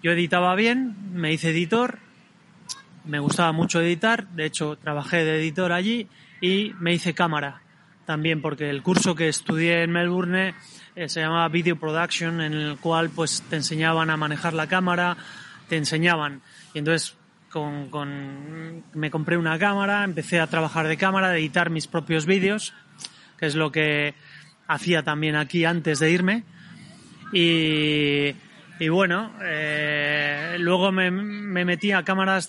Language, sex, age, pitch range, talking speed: Spanish, male, 30-49, 155-180 Hz, 155 wpm